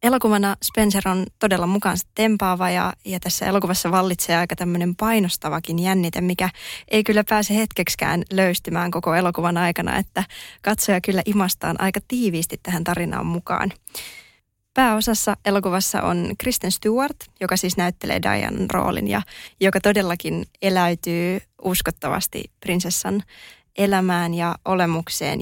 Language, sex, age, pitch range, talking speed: Finnish, female, 20-39, 175-200 Hz, 125 wpm